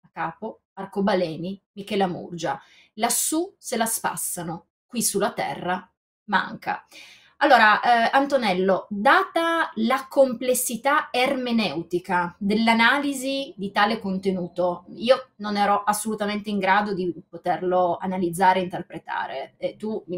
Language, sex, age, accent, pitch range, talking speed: Italian, female, 20-39, native, 190-270 Hz, 110 wpm